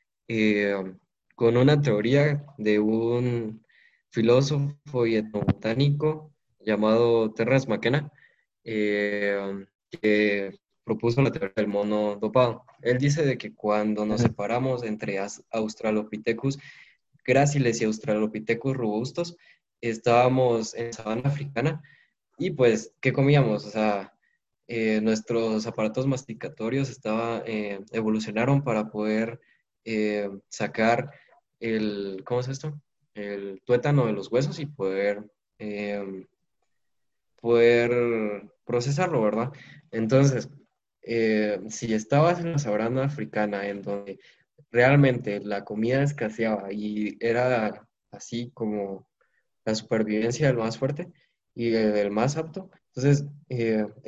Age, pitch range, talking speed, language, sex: 20-39, 105-135 Hz, 110 wpm, Spanish, male